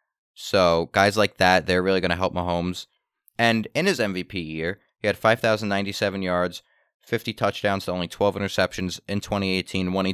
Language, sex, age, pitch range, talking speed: English, male, 30-49, 90-110 Hz, 170 wpm